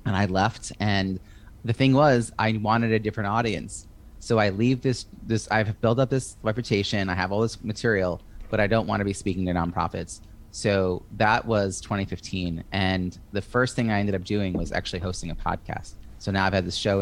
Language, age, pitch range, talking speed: English, 30-49, 90-110 Hz, 210 wpm